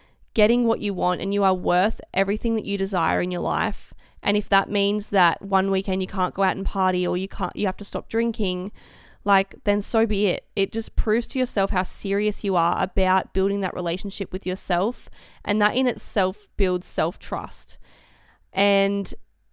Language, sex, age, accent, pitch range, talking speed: English, female, 20-39, Australian, 180-210 Hz, 195 wpm